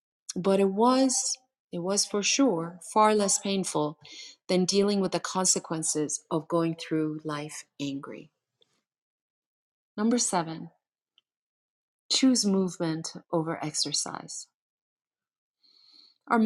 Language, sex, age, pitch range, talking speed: English, female, 30-49, 160-205 Hz, 100 wpm